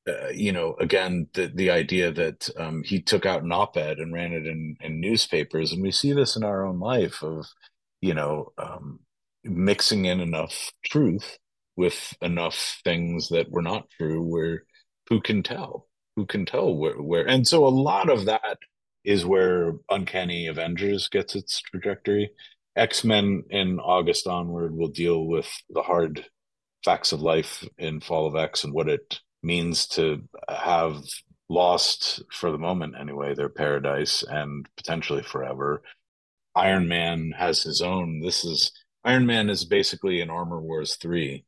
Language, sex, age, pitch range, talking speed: English, male, 40-59, 80-100 Hz, 160 wpm